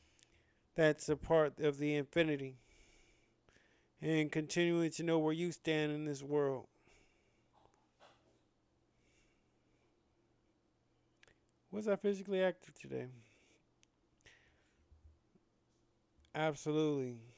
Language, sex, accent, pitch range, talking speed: English, male, American, 120-145 Hz, 75 wpm